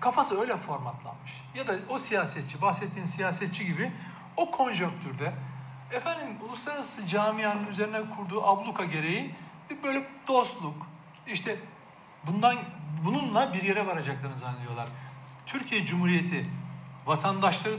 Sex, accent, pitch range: male, native, 160-250 Hz